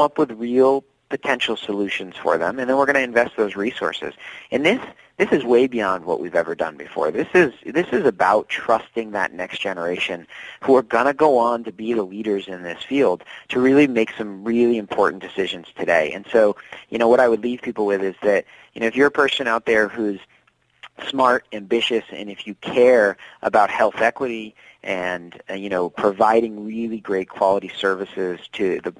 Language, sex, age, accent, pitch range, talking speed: English, male, 30-49, American, 100-120 Hz, 200 wpm